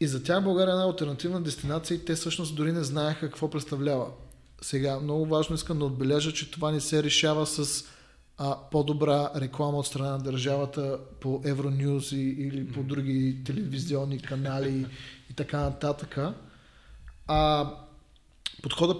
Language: Bulgarian